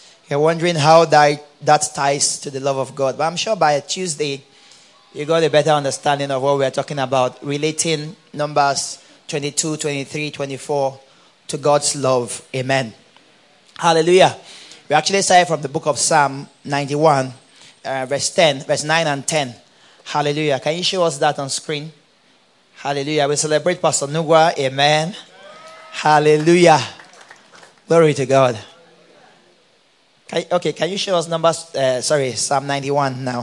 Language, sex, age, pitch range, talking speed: English, male, 30-49, 140-160 Hz, 145 wpm